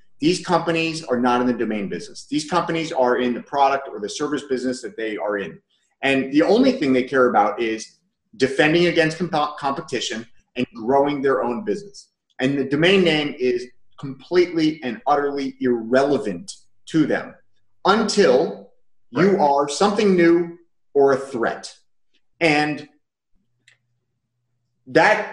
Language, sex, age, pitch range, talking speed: English, male, 30-49, 130-175 Hz, 140 wpm